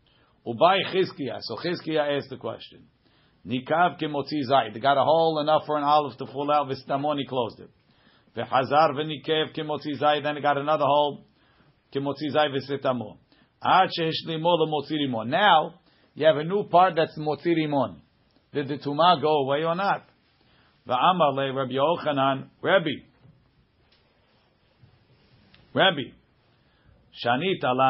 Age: 50-69